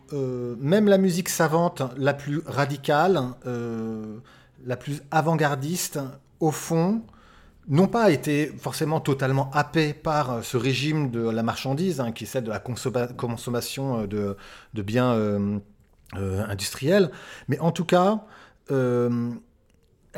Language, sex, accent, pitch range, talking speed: French, male, French, 120-155 Hz, 130 wpm